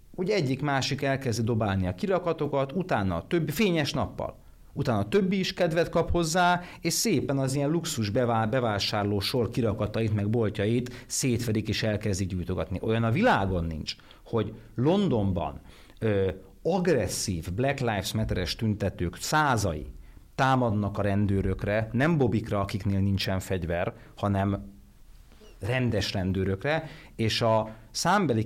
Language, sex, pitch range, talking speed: Hungarian, male, 100-130 Hz, 120 wpm